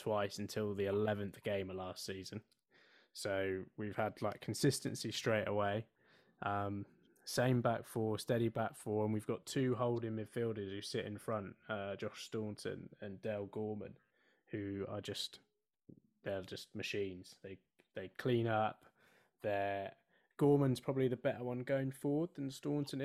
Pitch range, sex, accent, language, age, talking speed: 100-120 Hz, male, British, English, 20-39, 150 wpm